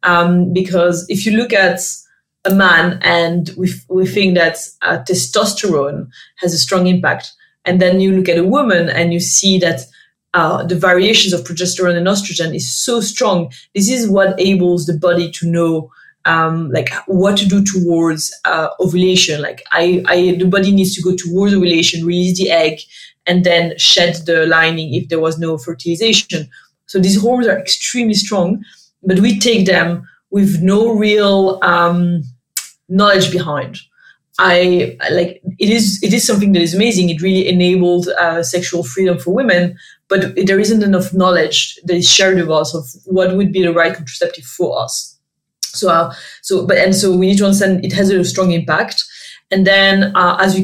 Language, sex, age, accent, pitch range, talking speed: English, female, 20-39, French, 175-195 Hz, 180 wpm